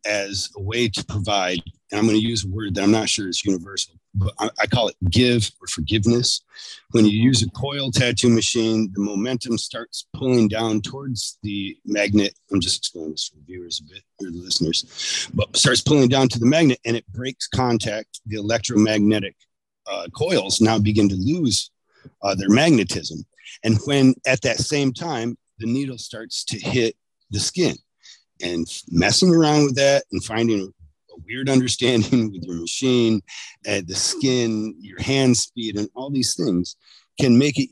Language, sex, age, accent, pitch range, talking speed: English, male, 40-59, American, 100-125 Hz, 180 wpm